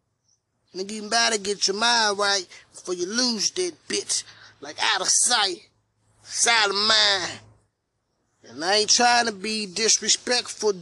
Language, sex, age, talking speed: English, male, 20-39, 145 wpm